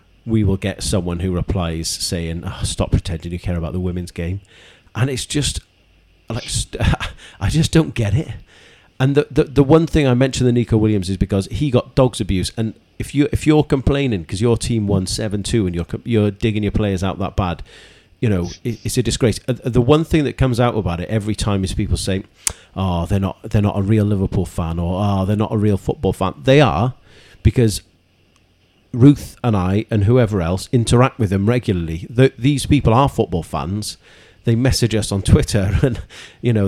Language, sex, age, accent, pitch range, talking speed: English, male, 40-59, British, 95-120 Hz, 205 wpm